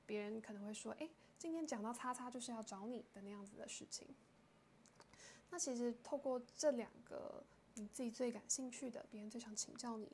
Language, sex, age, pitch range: Chinese, female, 10-29, 215-255 Hz